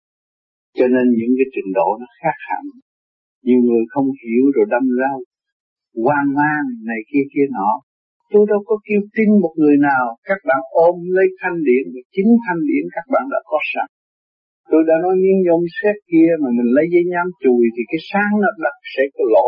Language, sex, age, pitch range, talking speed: Vietnamese, male, 60-79, 145-230 Hz, 195 wpm